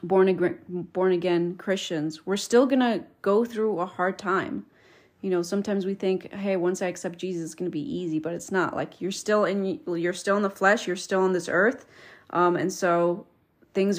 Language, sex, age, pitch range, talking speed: English, female, 30-49, 165-195 Hz, 205 wpm